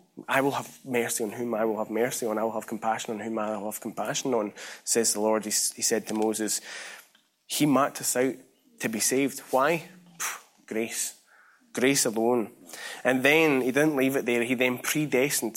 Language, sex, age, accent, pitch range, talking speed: English, male, 20-39, British, 115-145 Hz, 195 wpm